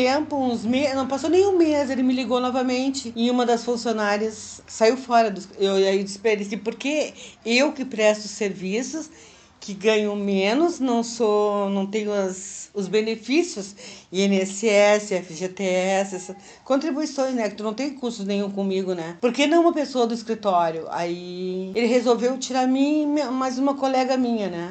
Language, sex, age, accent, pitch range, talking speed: Portuguese, female, 40-59, Brazilian, 200-250 Hz, 160 wpm